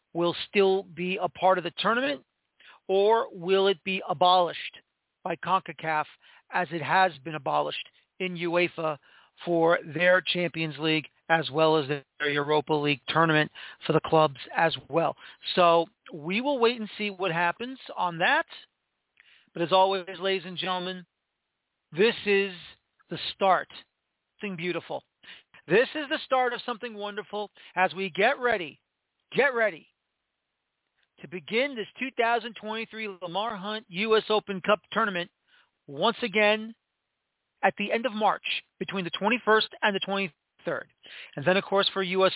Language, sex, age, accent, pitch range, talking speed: English, male, 40-59, American, 170-210 Hz, 145 wpm